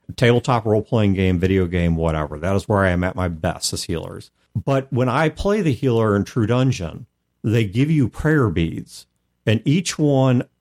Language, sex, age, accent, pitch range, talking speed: English, male, 50-69, American, 95-140 Hz, 185 wpm